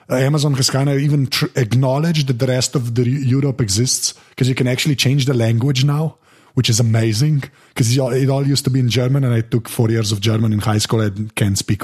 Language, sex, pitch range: English, male, 115-150 Hz